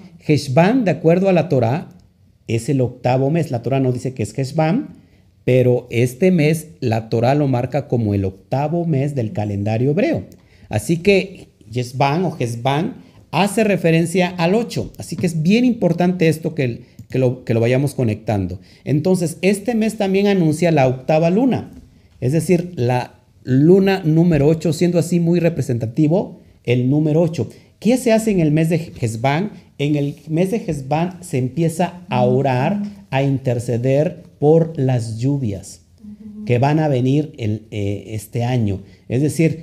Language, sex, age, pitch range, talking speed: Spanish, male, 50-69, 115-170 Hz, 155 wpm